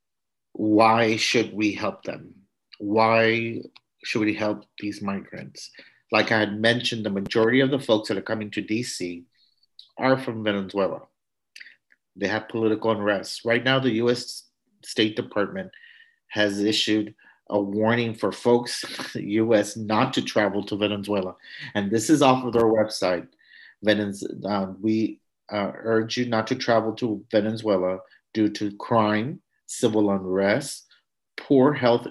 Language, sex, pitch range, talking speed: English, male, 105-125 Hz, 145 wpm